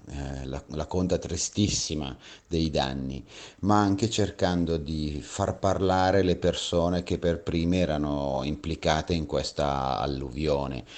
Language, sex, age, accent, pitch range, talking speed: Italian, male, 30-49, native, 75-85 Hz, 120 wpm